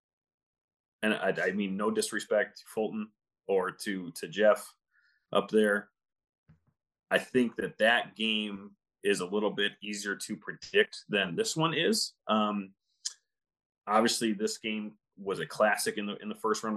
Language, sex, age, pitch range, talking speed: English, male, 30-49, 100-120 Hz, 155 wpm